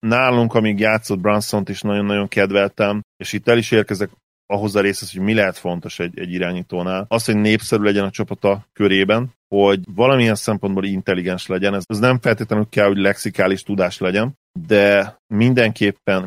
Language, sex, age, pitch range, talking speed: Hungarian, male, 30-49, 95-110 Hz, 160 wpm